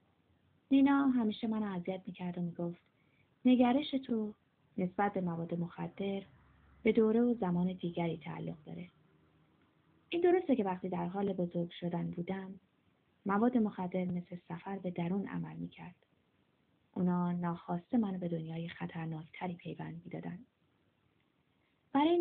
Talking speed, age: 125 wpm, 20-39